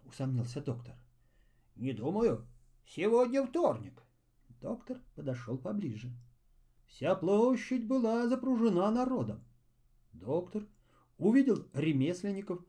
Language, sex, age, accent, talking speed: Russian, male, 40-59, native, 80 wpm